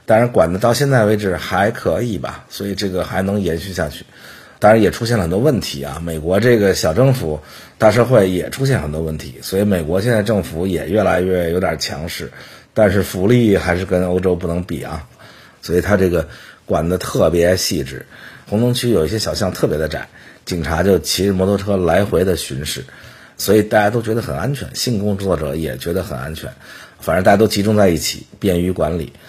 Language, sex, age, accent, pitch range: English, male, 50-69, Chinese, 80-110 Hz